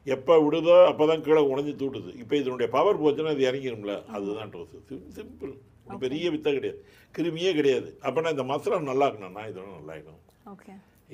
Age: 60-79